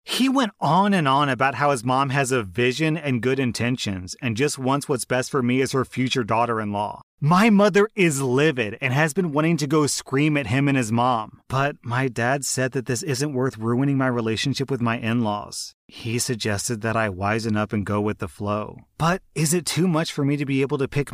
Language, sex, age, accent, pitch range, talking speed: English, male, 30-49, American, 115-140 Hz, 225 wpm